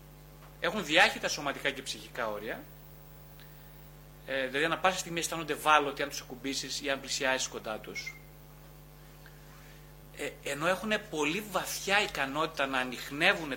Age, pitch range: 30-49, 140-190 Hz